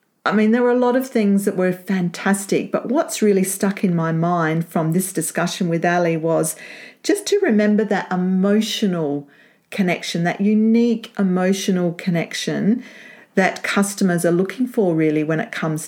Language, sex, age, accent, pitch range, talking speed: English, female, 40-59, Australian, 180-220 Hz, 165 wpm